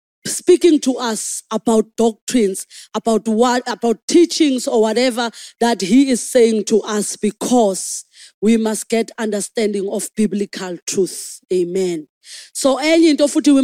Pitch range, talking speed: 205-270 Hz, 125 wpm